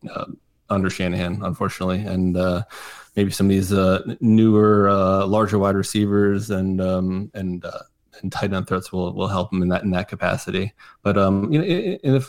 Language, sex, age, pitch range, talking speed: English, male, 30-49, 90-110 Hz, 185 wpm